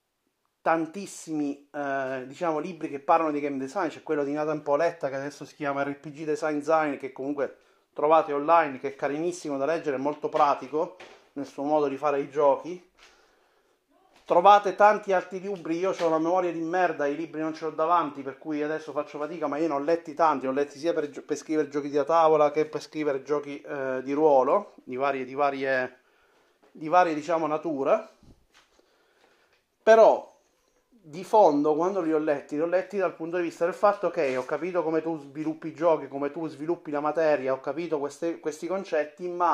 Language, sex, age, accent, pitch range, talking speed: Italian, male, 30-49, native, 145-170 Hz, 190 wpm